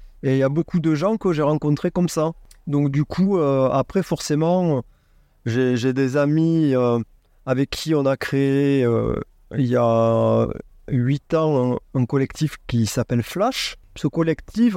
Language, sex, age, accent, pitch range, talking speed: French, male, 30-49, French, 115-150 Hz, 170 wpm